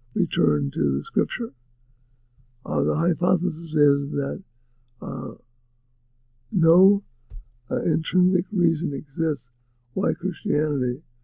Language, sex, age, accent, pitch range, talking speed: English, male, 60-79, American, 120-170 Hz, 90 wpm